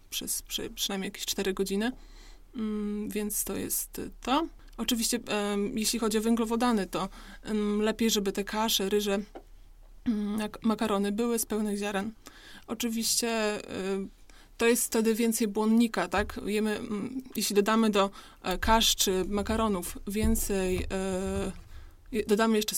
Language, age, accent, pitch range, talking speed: Polish, 20-39, native, 200-225 Hz, 115 wpm